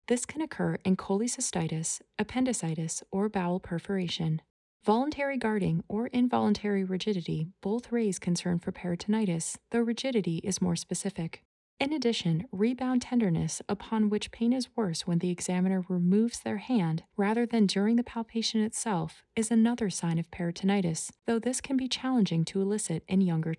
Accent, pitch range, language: American, 175-235 Hz, English